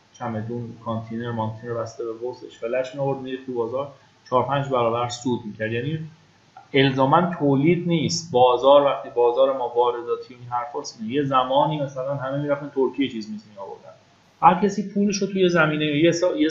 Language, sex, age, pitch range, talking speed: Persian, male, 30-49, 120-155 Hz, 145 wpm